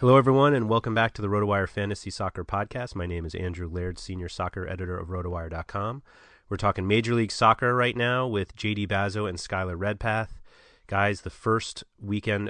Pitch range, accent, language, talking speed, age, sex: 95-105 Hz, American, English, 180 wpm, 30-49, male